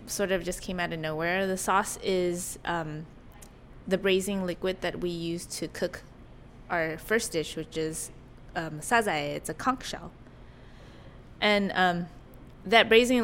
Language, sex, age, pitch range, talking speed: English, female, 20-39, 175-215 Hz, 150 wpm